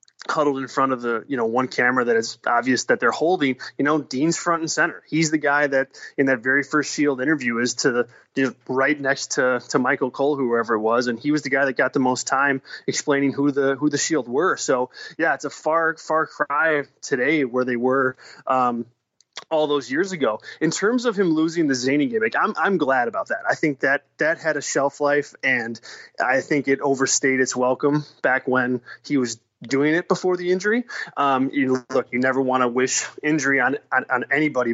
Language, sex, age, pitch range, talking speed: English, male, 20-39, 130-150 Hz, 220 wpm